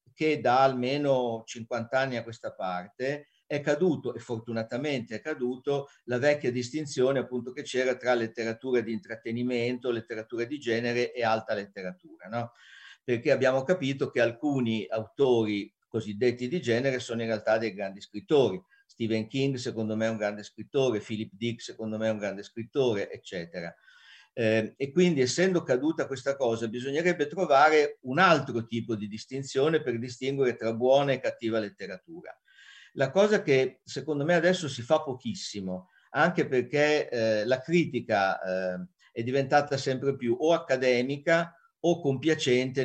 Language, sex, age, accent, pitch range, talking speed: Italian, male, 50-69, native, 115-145 Hz, 150 wpm